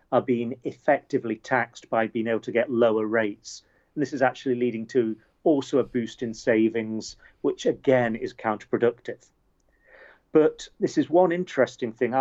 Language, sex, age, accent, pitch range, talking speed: English, male, 40-59, British, 115-130 Hz, 155 wpm